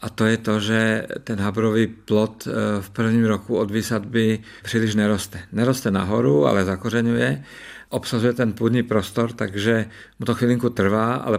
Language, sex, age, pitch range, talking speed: Czech, male, 50-69, 105-120 Hz, 155 wpm